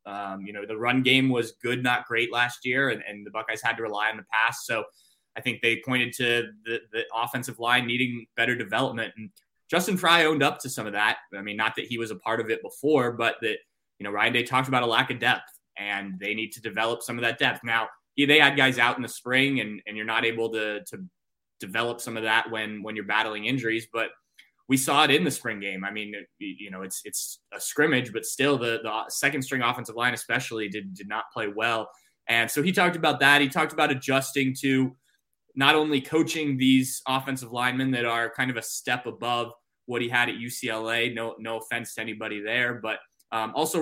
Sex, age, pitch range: male, 20-39, 110-130 Hz